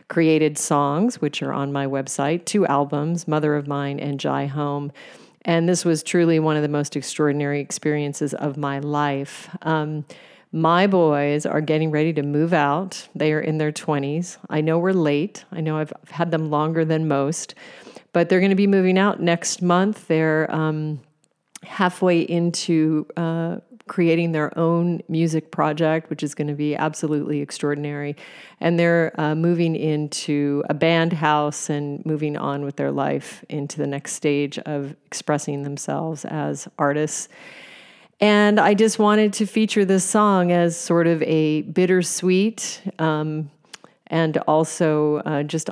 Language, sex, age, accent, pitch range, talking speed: English, female, 40-59, American, 145-170 Hz, 160 wpm